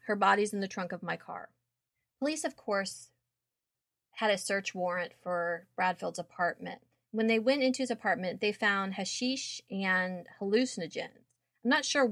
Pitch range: 180-220 Hz